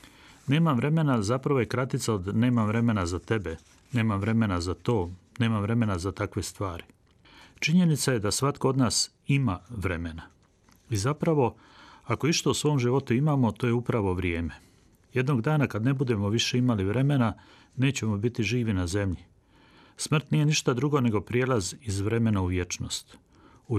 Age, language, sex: 40-59, Croatian, male